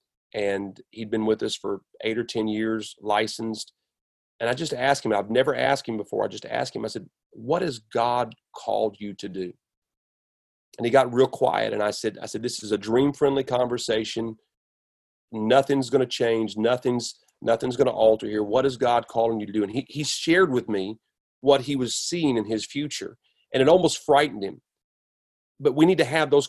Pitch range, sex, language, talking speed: 110-125 Hz, male, English, 205 wpm